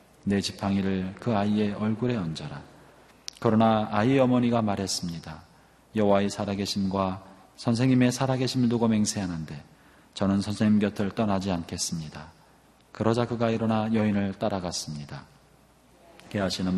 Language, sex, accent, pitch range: Korean, male, native, 95-115 Hz